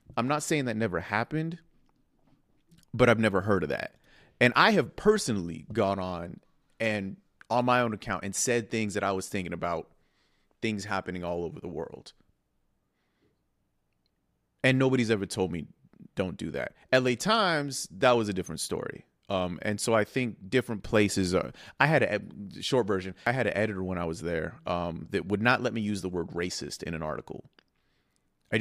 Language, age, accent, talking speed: English, 30-49, American, 180 wpm